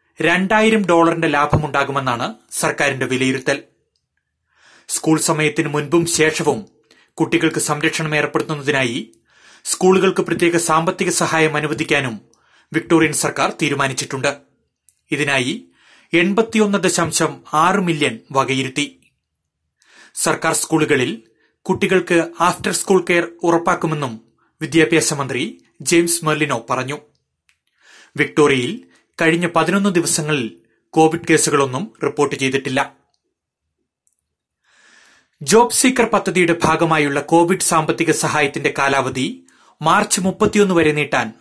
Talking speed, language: 70 wpm, Malayalam